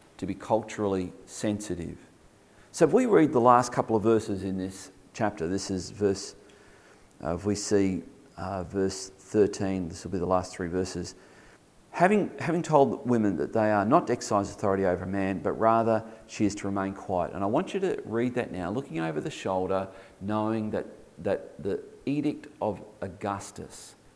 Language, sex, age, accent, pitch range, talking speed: English, male, 40-59, Australian, 95-120 Hz, 180 wpm